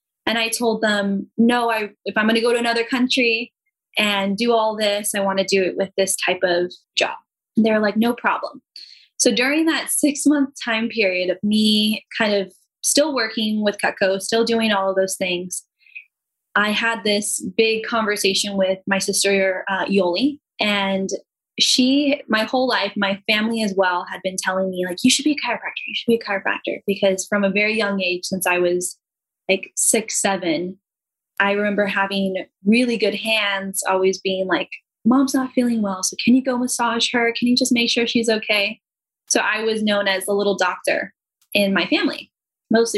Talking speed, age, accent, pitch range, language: 190 wpm, 10-29, American, 195-245 Hz, English